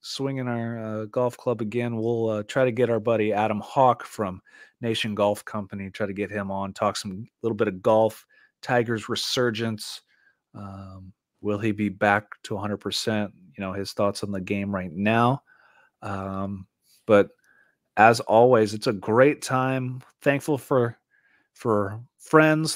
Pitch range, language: 105-125 Hz, English